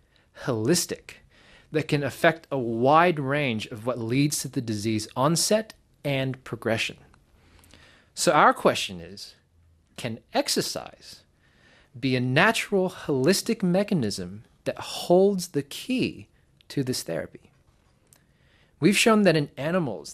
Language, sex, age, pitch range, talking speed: English, male, 30-49, 105-160 Hz, 115 wpm